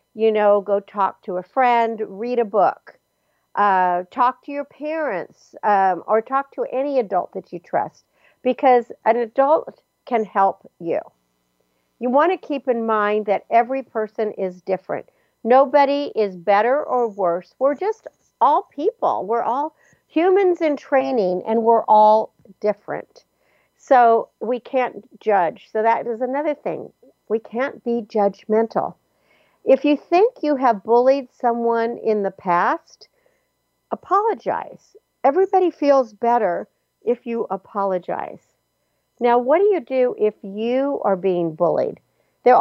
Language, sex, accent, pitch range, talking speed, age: English, female, American, 210-285 Hz, 140 wpm, 60-79